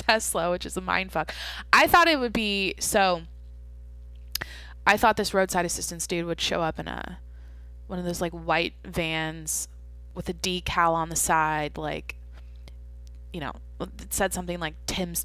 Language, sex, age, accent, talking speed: English, female, 20-39, American, 165 wpm